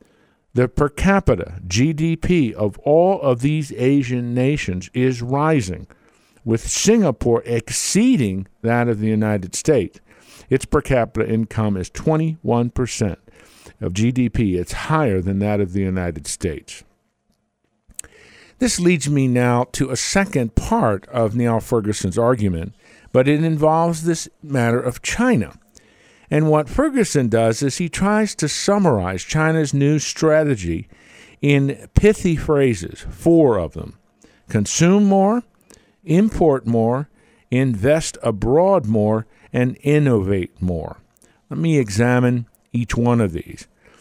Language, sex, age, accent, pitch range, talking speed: English, male, 50-69, American, 110-155 Hz, 125 wpm